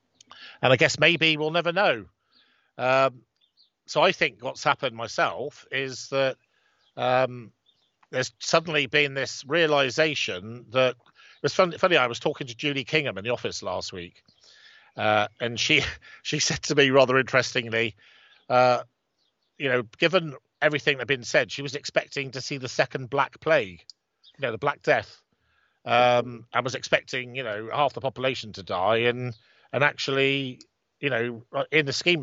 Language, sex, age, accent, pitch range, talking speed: English, male, 50-69, British, 115-140 Hz, 165 wpm